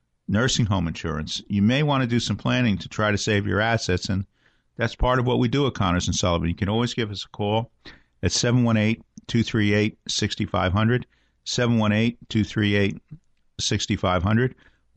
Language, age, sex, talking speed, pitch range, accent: English, 50-69, male, 150 wpm, 95-115 Hz, American